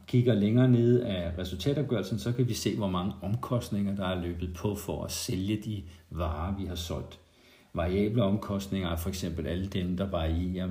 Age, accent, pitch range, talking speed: 50-69, native, 90-110 Hz, 180 wpm